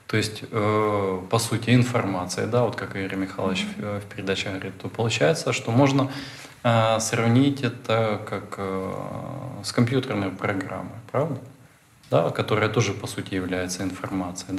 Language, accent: Russian, native